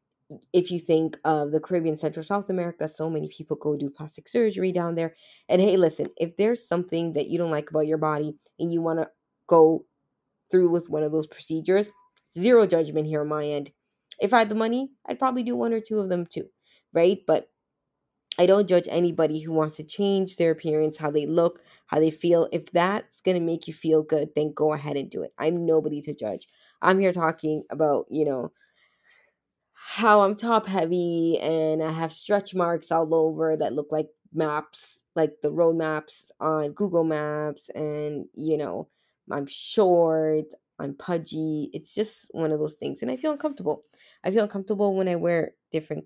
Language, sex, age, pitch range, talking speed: English, female, 20-39, 155-185 Hz, 195 wpm